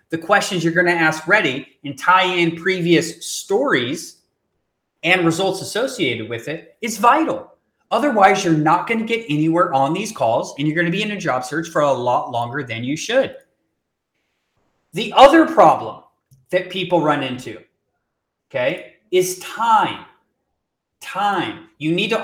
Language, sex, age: English, male, 30-49